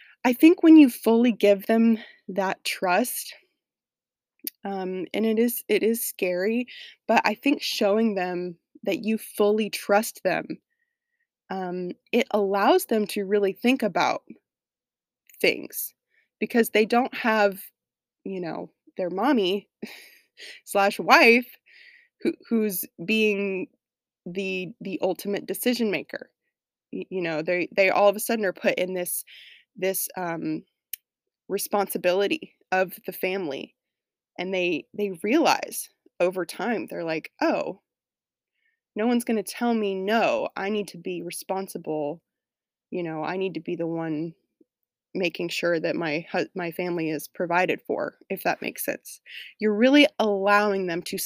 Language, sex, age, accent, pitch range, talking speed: English, female, 20-39, American, 185-240 Hz, 140 wpm